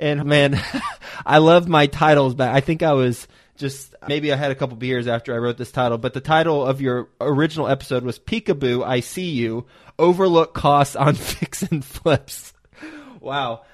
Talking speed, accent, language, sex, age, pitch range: 185 wpm, American, English, male, 20-39, 120-145 Hz